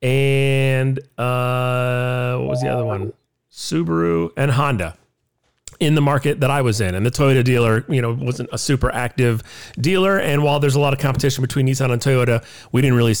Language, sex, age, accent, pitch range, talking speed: English, male, 40-59, American, 125-155 Hz, 190 wpm